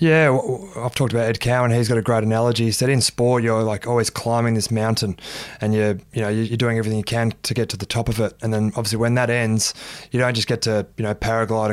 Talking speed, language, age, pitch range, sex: 260 wpm, English, 20-39, 110-120 Hz, male